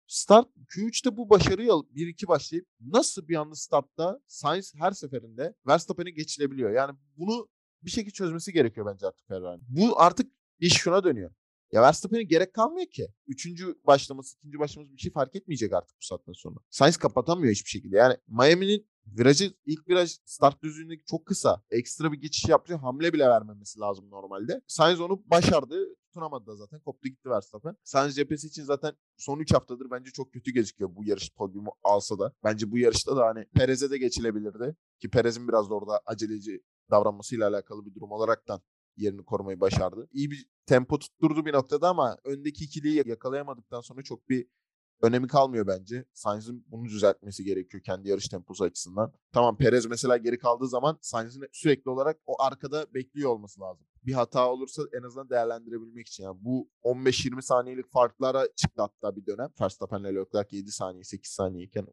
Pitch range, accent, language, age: 115-165 Hz, native, Turkish, 30-49